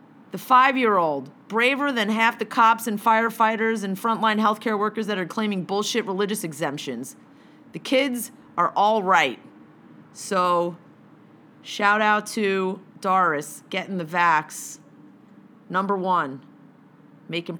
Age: 30-49